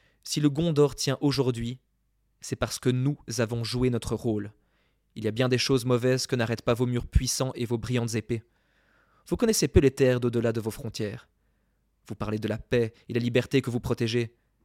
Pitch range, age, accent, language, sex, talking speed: 115-135 Hz, 20-39, French, French, male, 205 wpm